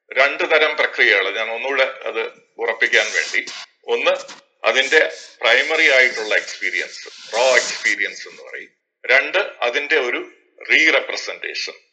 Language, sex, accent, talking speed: Malayalam, male, native, 105 wpm